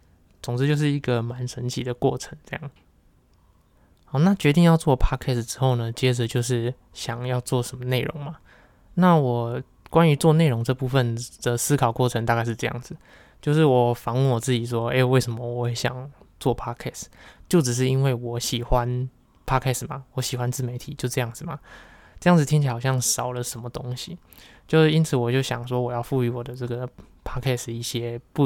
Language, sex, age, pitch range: Chinese, male, 20-39, 120-135 Hz